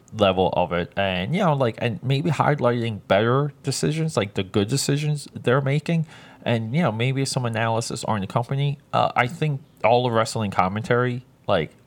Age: 20-39